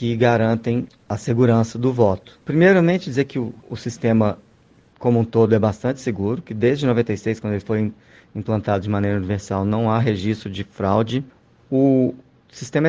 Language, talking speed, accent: Portuguese, 165 wpm, Brazilian